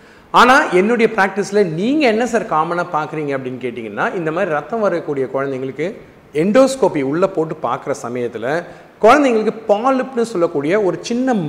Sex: male